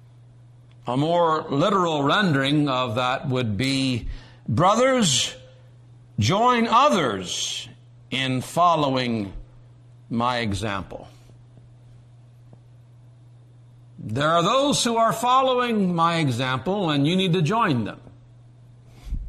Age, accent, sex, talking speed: 60-79, American, male, 90 wpm